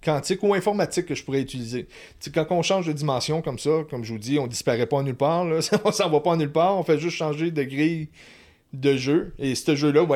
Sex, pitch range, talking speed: male, 125-160 Hz, 260 wpm